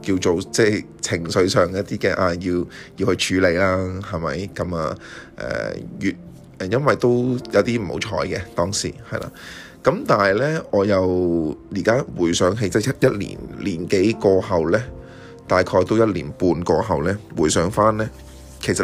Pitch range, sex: 85-110 Hz, male